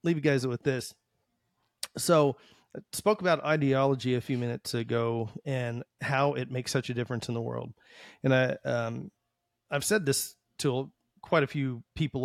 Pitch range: 120-145 Hz